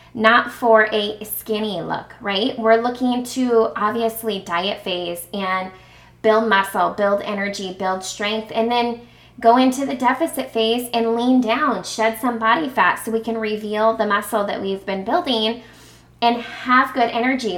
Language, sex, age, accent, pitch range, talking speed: English, female, 20-39, American, 205-250 Hz, 160 wpm